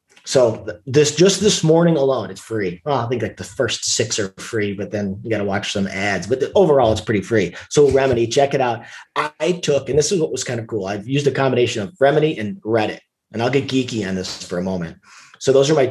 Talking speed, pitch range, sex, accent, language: 255 wpm, 100-140 Hz, male, American, English